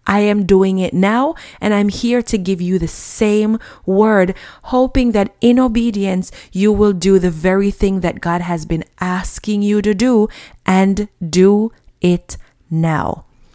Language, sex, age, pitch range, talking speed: English, female, 30-49, 185-230 Hz, 160 wpm